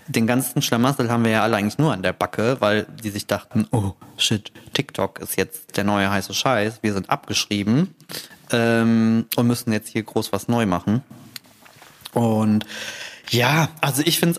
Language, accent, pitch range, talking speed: German, German, 105-125 Hz, 175 wpm